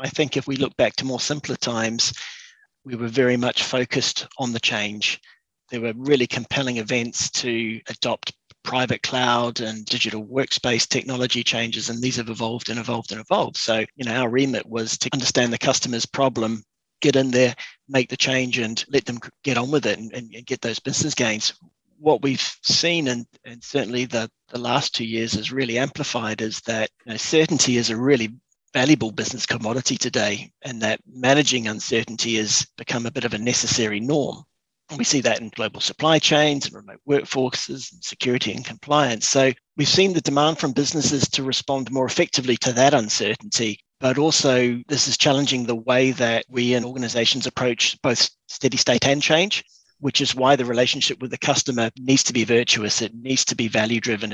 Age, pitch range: 30-49, 115-135 Hz